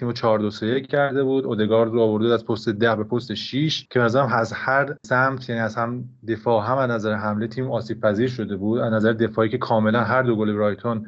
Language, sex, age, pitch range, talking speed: Persian, male, 30-49, 110-135 Hz, 220 wpm